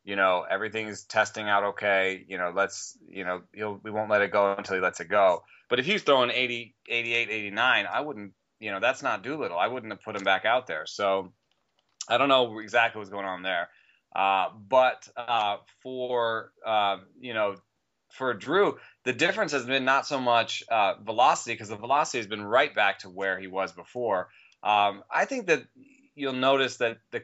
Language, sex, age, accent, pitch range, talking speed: English, male, 30-49, American, 95-120 Hz, 205 wpm